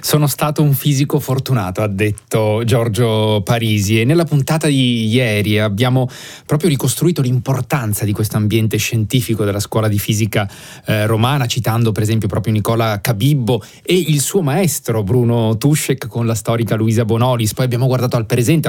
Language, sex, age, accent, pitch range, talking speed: Italian, male, 30-49, native, 110-130 Hz, 160 wpm